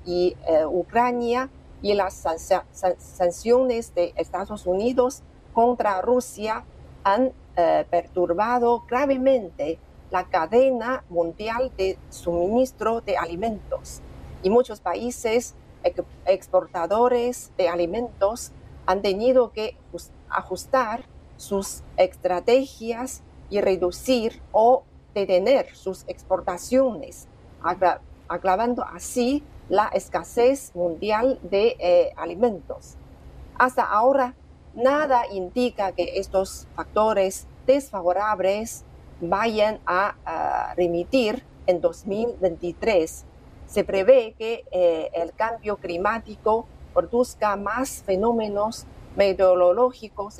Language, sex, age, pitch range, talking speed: Spanish, female, 40-59, 180-245 Hz, 85 wpm